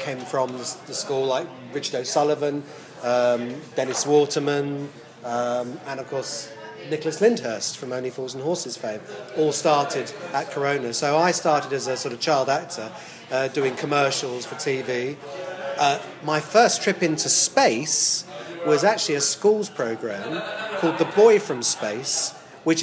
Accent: British